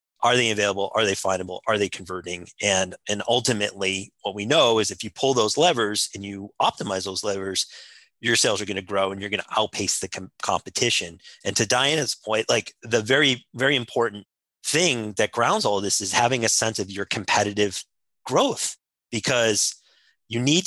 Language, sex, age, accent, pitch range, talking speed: English, male, 30-49, American, 100-130 Hz, 190 wpm